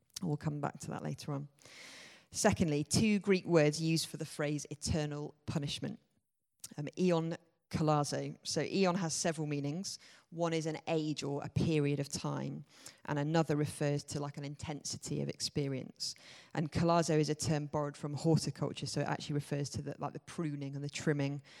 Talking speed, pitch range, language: 170 wpm, 140-160 Hz, English